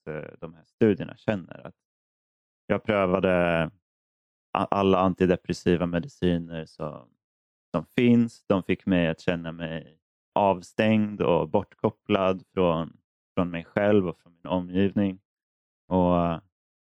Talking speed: 110 wpm